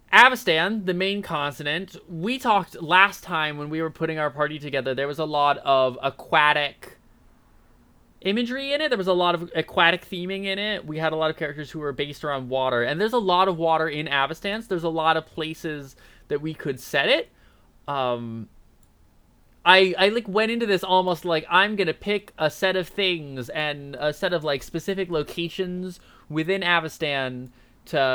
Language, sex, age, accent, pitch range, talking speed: English, male, 20-39, American, 135-170 Hz, 190 wpm